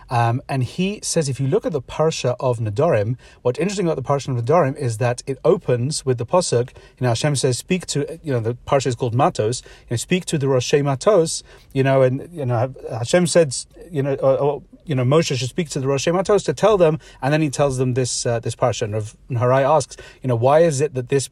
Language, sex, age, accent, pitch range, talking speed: English, male, 30-49, British, 125-145 Hz, 250 wpm